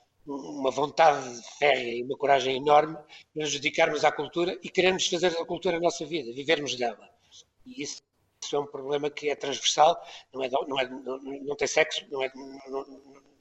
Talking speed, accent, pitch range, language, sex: 185 wpm, Portuguese, 130-180 Hz, Portuguese, male